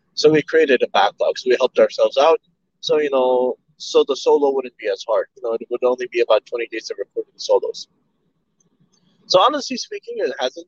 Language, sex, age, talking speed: English, male, 20-39, 210 wpm